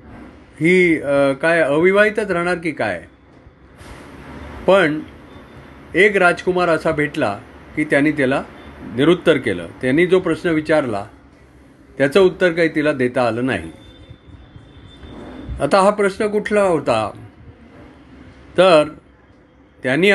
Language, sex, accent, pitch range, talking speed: Marathi, male, native, 130-180 Hz, 100 wpm